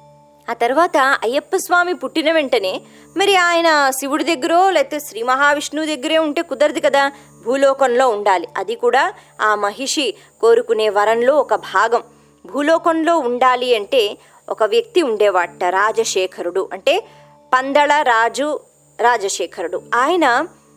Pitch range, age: 235-345 Hz, 20-39